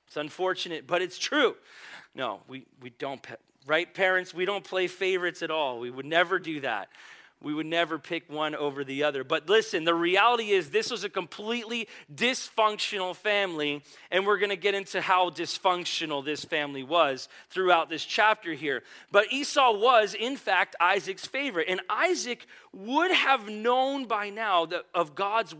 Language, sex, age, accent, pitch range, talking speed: English, male, 40-59, American, 170-220 Hz, 170 wpm